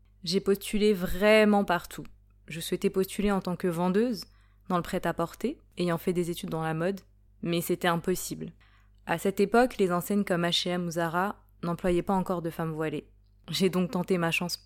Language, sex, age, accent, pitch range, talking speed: French, female, 20-39, French, 165-190 Hz, 180 wpm